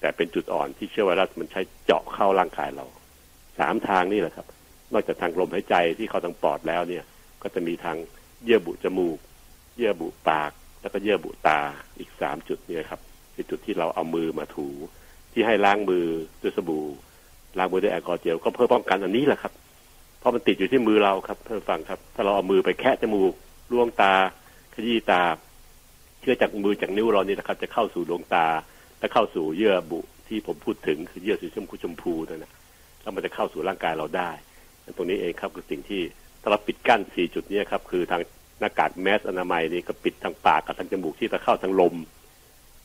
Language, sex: Thai, male